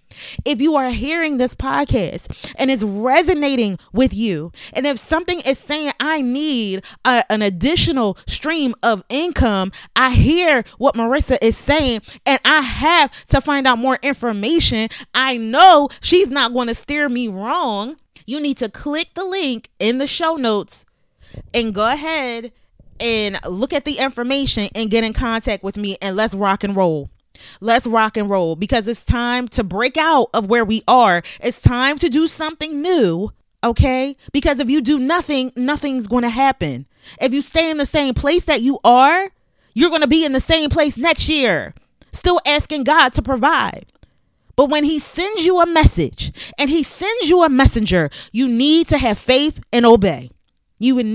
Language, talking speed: English, 180 wpm